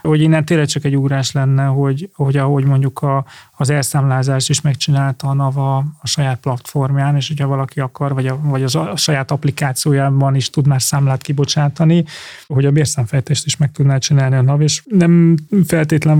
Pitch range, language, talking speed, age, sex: 135-150 Hz, Hungarian, 185 wpm, 30-49, male